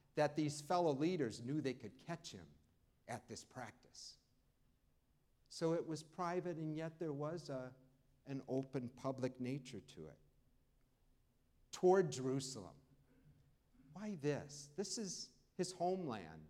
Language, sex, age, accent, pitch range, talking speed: English, male, 50-69, American, 120-160 Hz, 125 wpm